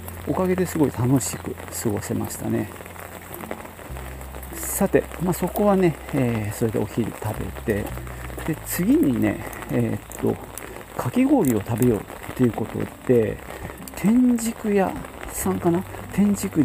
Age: 50-69